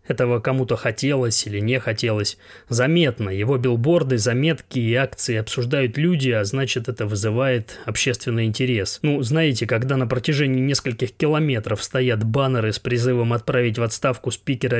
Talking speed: 140 wpm